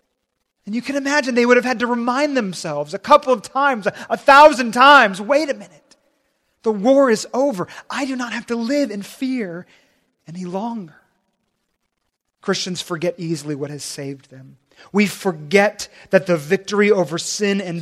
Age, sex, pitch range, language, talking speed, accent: 30-49, male, 175-240 Hz, English, 170 wpm, American